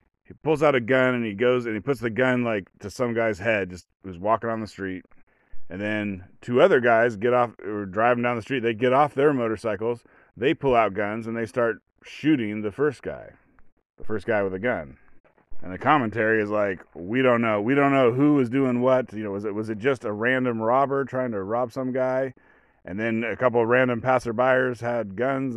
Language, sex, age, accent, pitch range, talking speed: English, male, 30-49, American, 105-130 Hz, 225 wpm